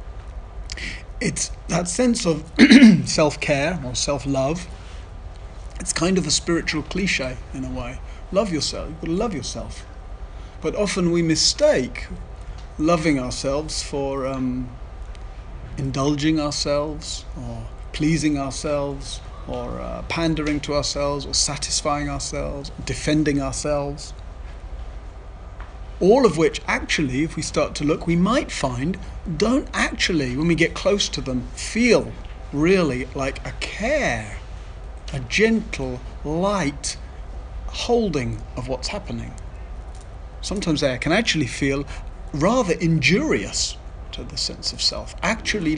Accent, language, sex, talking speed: British, English, male, 120 wpm